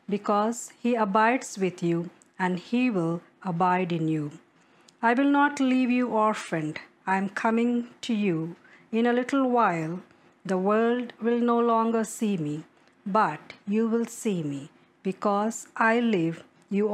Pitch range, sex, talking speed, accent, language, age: 185-235 Hz, female, 150 wpm, Indian, English, 50-69